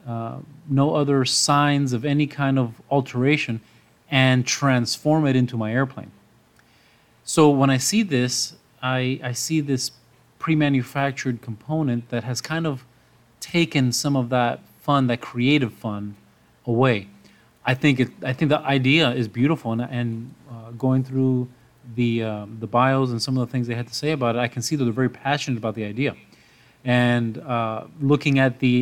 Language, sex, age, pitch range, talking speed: English, male, 30-49, 120-140 Hz, 175 wpm